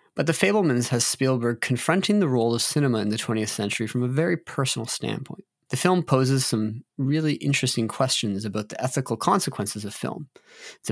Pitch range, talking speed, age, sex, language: 110-140 Hz, 180 wpm, 20-39, male, English